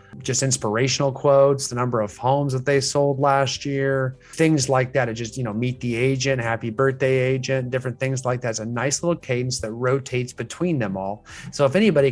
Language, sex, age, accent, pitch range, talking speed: English, male, 30-49, American, 115-140 Hz, 210 wpm